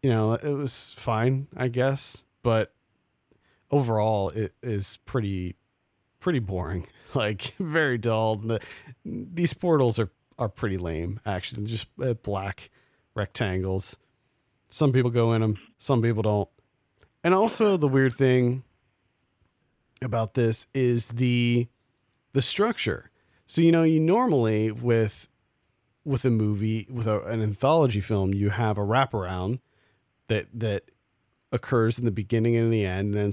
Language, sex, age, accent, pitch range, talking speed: English, male, 40-59, American, 105-130 Hz, 135 wpm